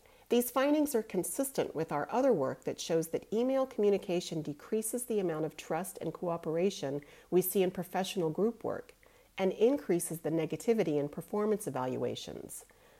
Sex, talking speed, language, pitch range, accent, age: female, 150 wpm, English, 145-205 Hz, American, 40-59